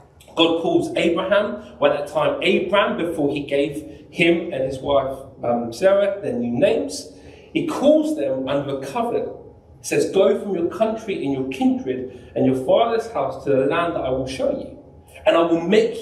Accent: British